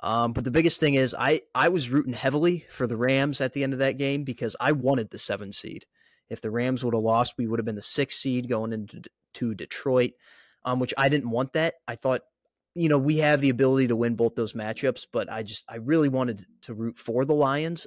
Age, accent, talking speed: 20-39, American, 240 wpm